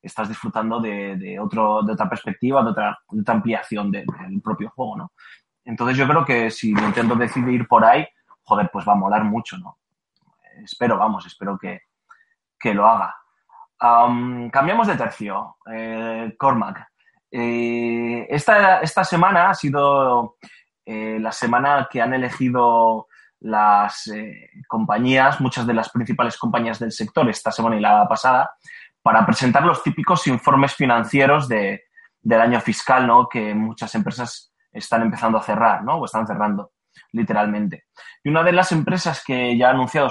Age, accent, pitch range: 20-39, Spanish, 110-140 Hz